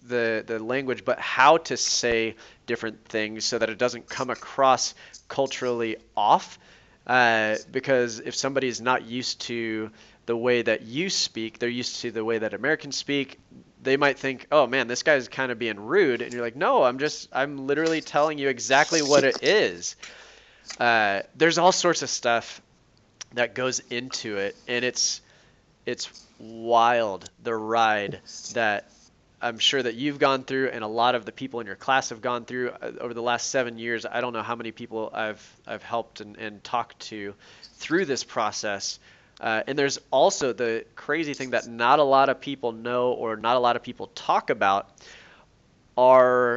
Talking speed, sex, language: 185 wpm, male, English